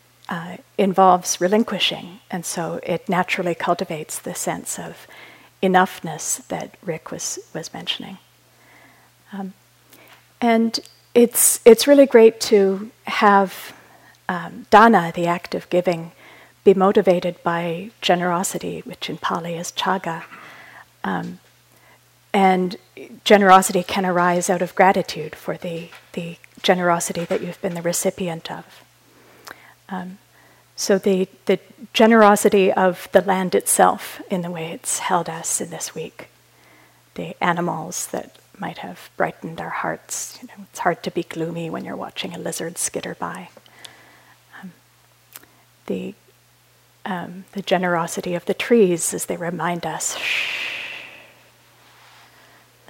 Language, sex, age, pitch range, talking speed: English, female, 40-59, 170-195 Hz, 125 wpm